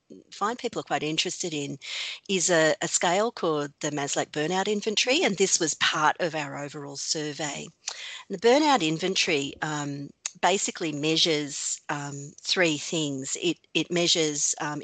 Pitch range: 150-185 Hz